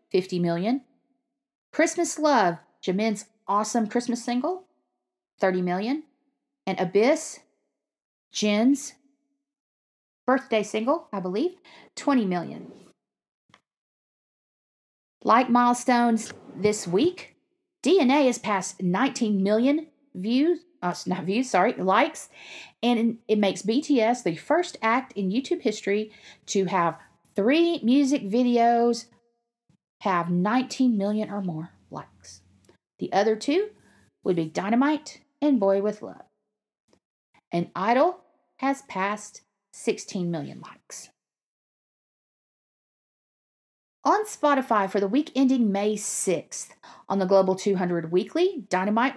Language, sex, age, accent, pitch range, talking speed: English, female, 40-59, American, 195-280 Hz, 105 wpm